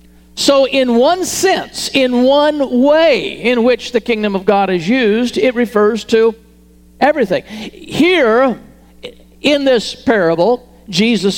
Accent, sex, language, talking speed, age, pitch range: American, male, English, 125 wpm, 50-69, 185-260 Hz